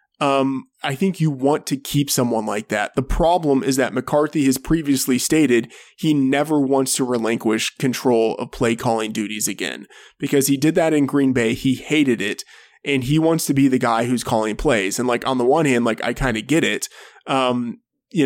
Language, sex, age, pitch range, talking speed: English, male, 20-39, 120-140 Hz, 205 wpm